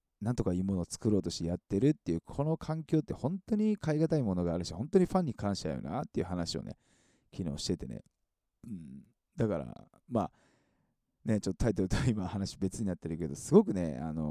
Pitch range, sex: 85-135 Hz, male